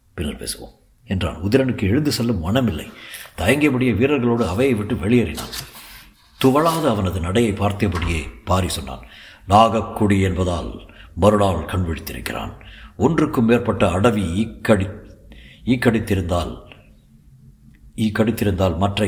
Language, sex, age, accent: Tamil, male, 60-79, native